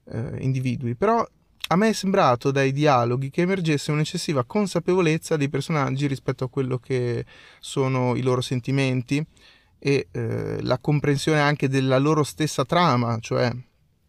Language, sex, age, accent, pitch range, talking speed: Italian, male, 30-49, native, 130-160 Hz, 135 wpm